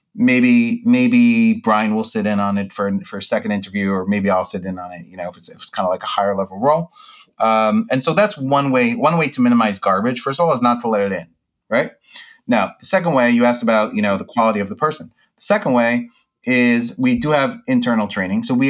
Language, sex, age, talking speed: English, male, 30-49, 250 wpm